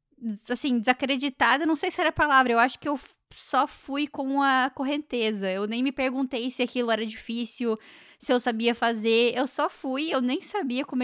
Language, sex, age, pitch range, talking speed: Portuguese, female, 10-29, 220-260 Hz, 195 wpm